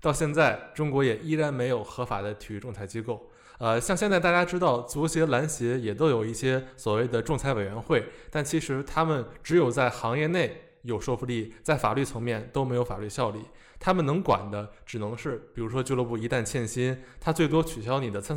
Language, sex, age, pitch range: Chinese, male, 20-39, 110-145 Hz